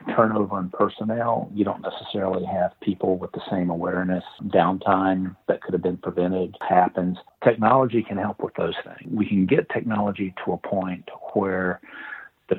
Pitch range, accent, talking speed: 90-110 Hz, American, 160 wpm